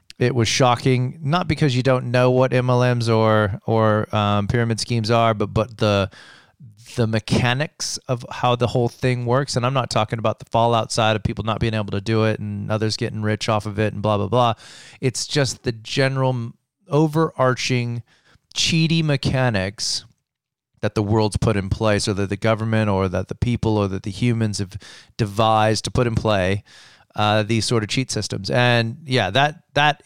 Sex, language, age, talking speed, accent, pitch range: male, English, 30-49, 190 wpm, American, 105-125 Hz